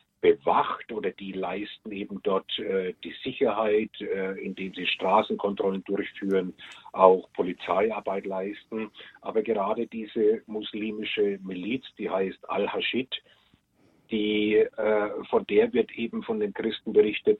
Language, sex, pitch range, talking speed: German, male, 105-130 Hz, 120 wpm